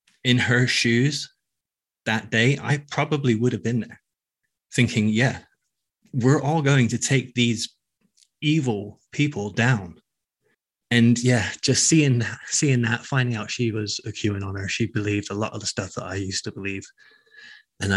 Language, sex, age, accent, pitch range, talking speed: English, male, 20-39, British, 105-125 Hz, 165 wpm